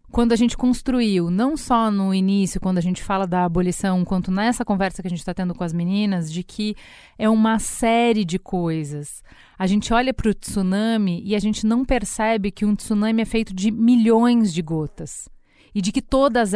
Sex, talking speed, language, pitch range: female, 205 wpm, Portuguese, 185-220 Hz